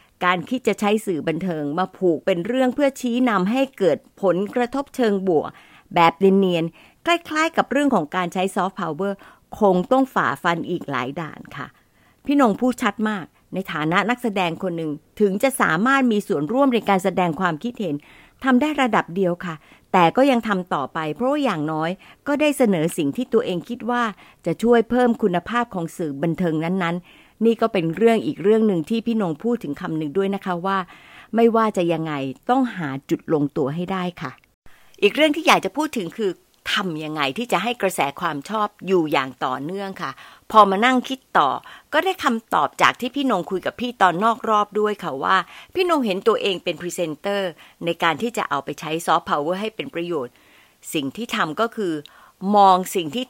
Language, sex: Thai, female